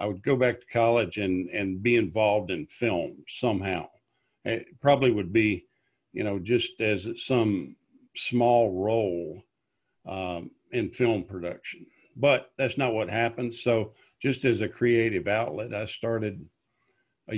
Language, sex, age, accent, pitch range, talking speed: English, male, 50-69, American, 95-125 Hz, 145 wpm